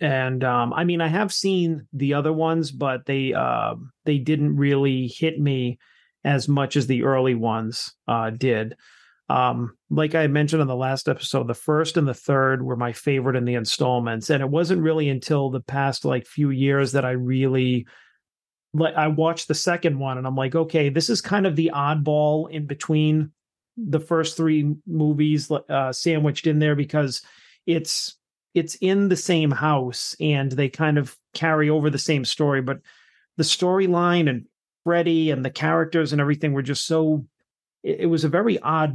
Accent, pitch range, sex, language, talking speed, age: American, 135-160 Hz, male, English, 180 wpm, 40-59